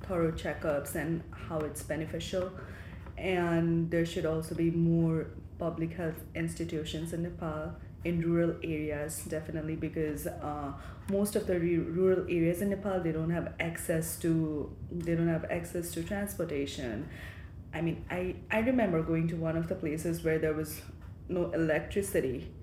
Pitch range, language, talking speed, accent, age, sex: 160-180 Hz, English, 155 wpm, Indian, 20-39, female